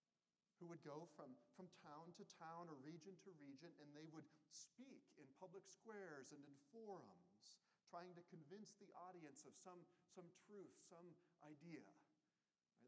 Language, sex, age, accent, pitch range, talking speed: English, male, 40-59, American, 120-175 Hz, 160 wpm